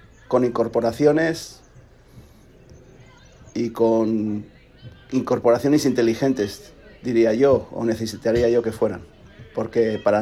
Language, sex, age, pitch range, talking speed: Spanish, male, 40-59, 105-125 Hz, 90 wpm